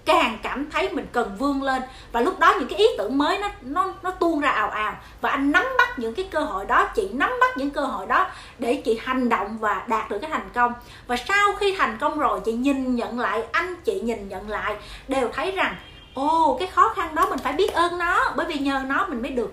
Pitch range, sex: 240-370 Hz, female